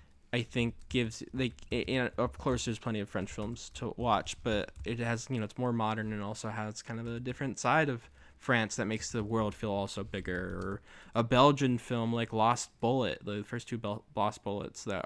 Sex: male